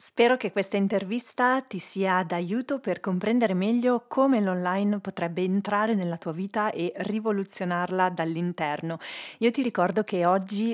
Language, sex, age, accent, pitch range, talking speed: Italian, female, 30-49, native, 180-215 Hz, 140 wpm